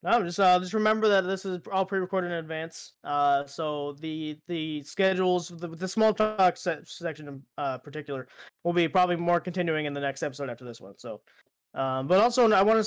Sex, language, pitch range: male, English, 155-190 Hz